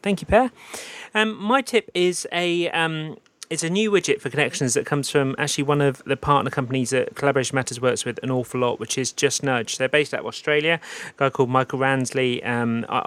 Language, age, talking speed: English, 30-49, 220 wpm